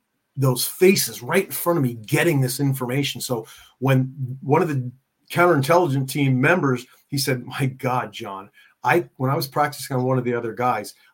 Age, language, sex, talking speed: 40-59, English, male, 185 wpm